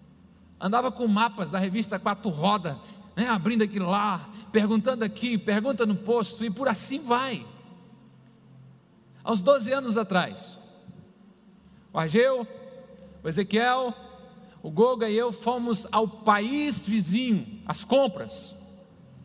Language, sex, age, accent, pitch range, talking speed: Portuguese, male, 50-69, Brazilian, 200-245 Hz, 120 wpm